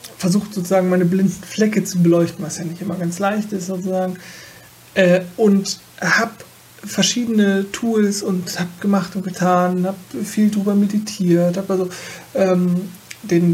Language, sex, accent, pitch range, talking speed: German, male, German, 170-195 Hz, 145 wpm